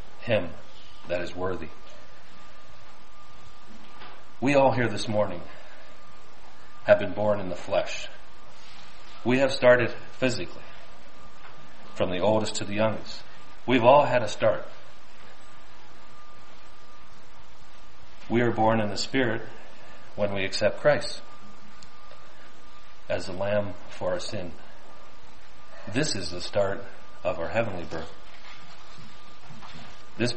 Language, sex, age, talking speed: English, male, 40-59, 110 wpm